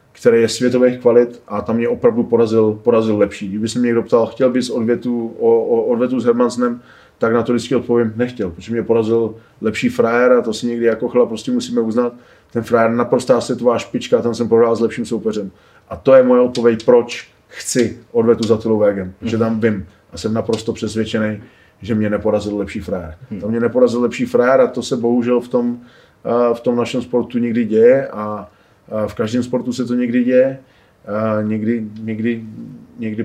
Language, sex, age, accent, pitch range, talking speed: Czech, male, 20-39, native, 110-125 Hz, 195 wpm